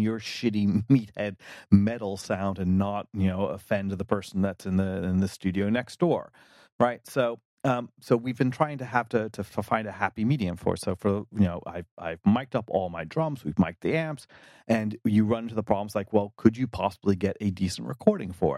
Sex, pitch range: male, 95-115 Hz